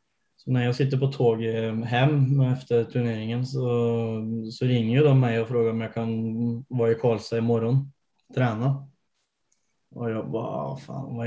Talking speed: 155 wpm